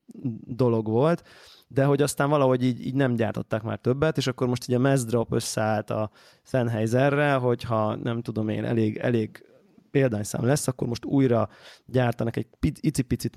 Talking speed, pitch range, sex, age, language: 155 wpm, 115-135 Hz, male, 20-39, Hungarian